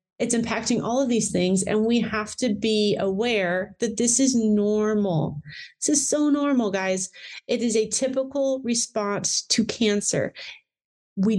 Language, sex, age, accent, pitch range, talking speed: English, female, 30-49, American, 205-245 Hz, 155 wpm